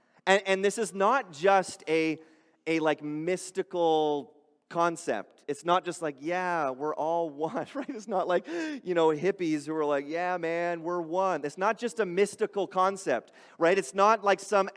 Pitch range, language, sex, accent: 150-205 Hz, English, male, American